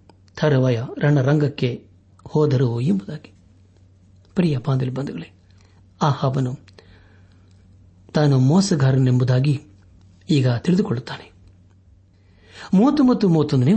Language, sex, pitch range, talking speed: Kannada, male, 95-160 Hz, 45 wpm